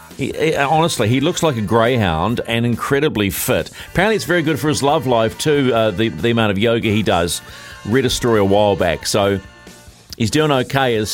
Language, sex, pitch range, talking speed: English, male, 100-140 Hz, 200 wpm